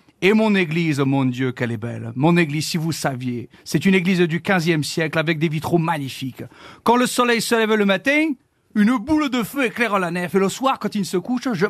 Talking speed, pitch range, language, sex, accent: 230 wpm, 155-235 Hz, French, male, French